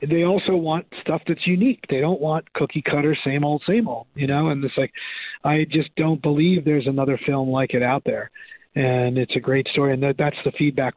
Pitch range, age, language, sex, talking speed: 135-170 Hz, 40-59, English, male, 220 wpm